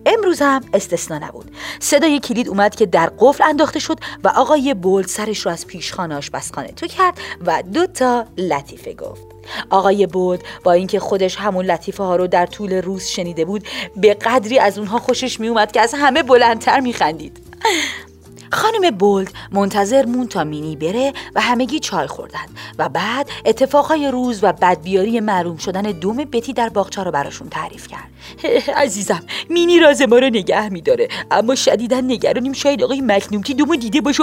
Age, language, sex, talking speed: 40-59, Persian, female, 165 wpm